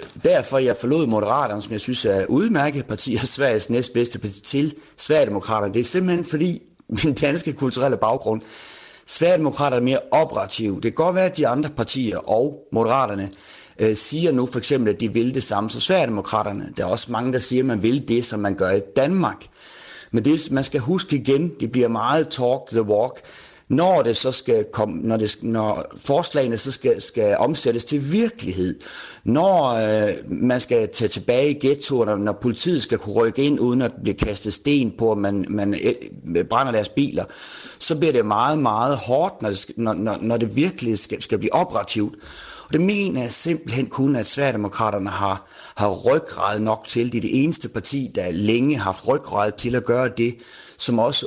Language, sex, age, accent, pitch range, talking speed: Danish, male, 30-49, native, 110-140 Hz, 190 wpm